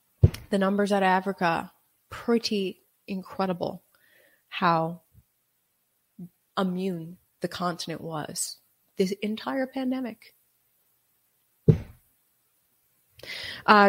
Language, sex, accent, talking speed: English, female, American, 70 wpm